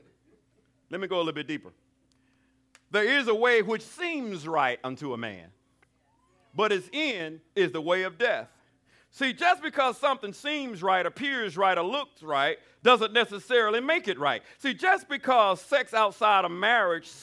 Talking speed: 165 wpm